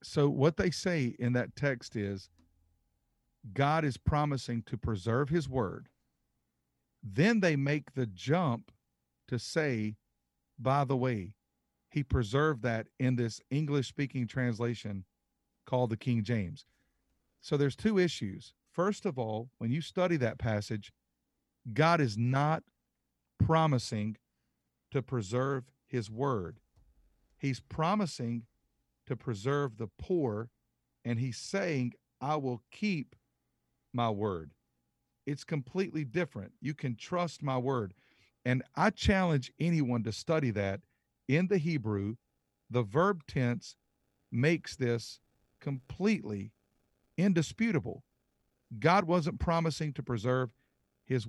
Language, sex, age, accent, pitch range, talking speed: English, male, 50-69, American, 110-150 Hz, 120 wpm